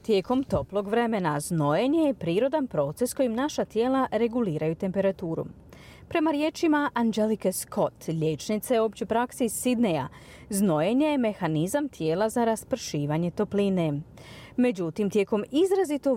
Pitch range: 170-260 Hz